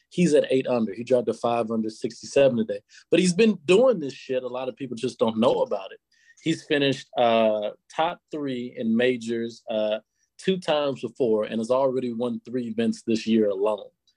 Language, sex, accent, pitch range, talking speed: English, male, American, 115-160 Hz, 195 wpm